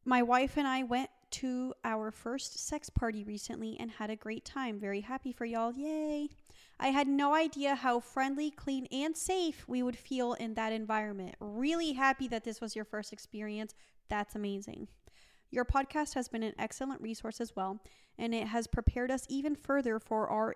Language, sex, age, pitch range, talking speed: English, female, 30-49, 220-270 Hz, 185 wpm